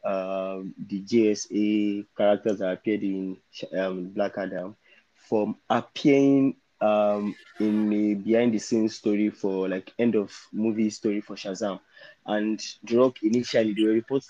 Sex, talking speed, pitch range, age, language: male, 135 wpm, 100-120 Hz, 20-39, English